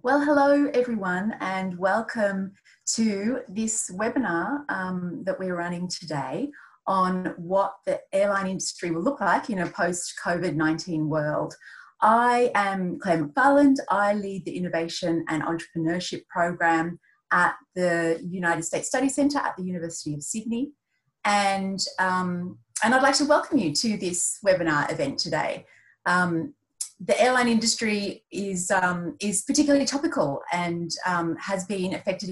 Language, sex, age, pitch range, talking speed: English, female, 30-49, 165-220 Hz, 130 wpm